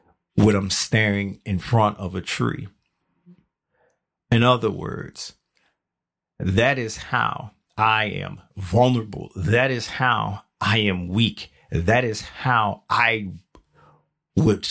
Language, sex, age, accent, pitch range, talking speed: English, male, 40-59, American, 100-130 Hz, 115 wpm